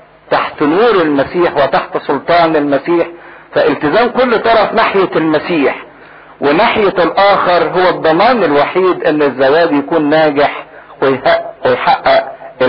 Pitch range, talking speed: 135-165 Hz, 100 wpm